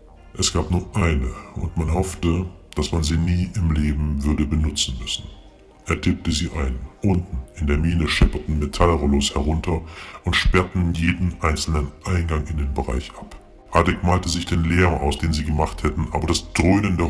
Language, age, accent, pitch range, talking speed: German, 60-79, German, 75-90 Hz, 170 wpm